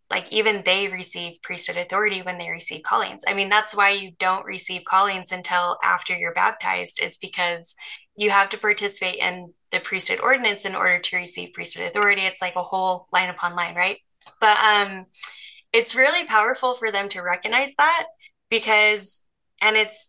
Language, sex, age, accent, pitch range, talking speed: English, female, 10-29, American, 190-235 Hz, 175 wpm